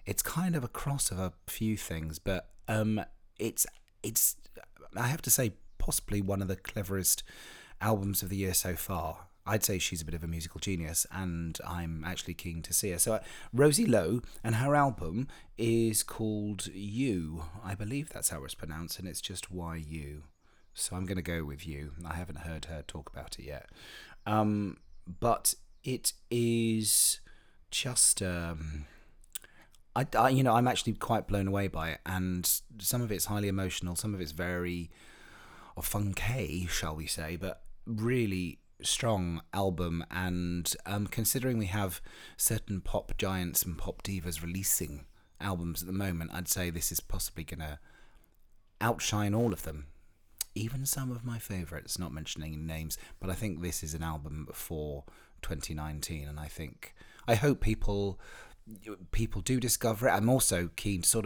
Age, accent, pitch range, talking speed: 30-49, British, 85-105 Hz, 170 wpm